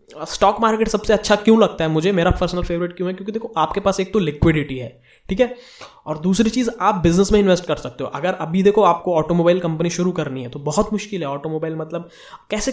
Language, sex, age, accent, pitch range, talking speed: Hindi, male, 20-39, native, 160-190 Hz, 230 wpm